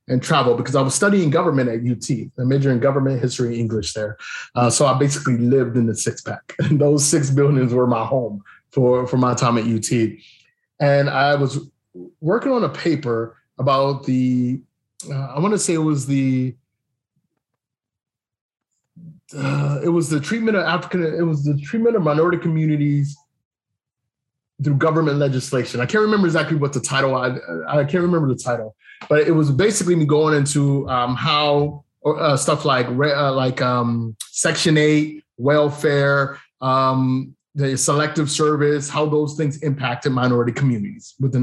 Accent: American